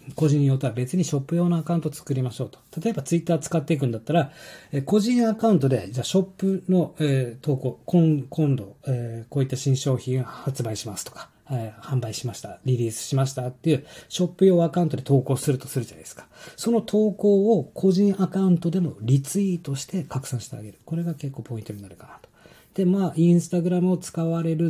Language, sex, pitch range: Japanese, male, 130-170 Hz